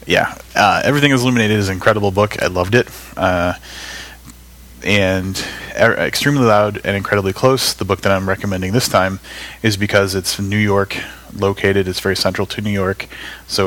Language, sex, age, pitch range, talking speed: English, male, 30-49, 90-100 Hz, 175 wpm